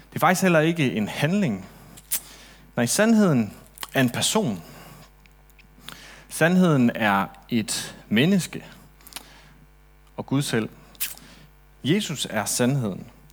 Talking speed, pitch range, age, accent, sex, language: 100 wpm, 115-170 Hz, 30-49, native, male, Danish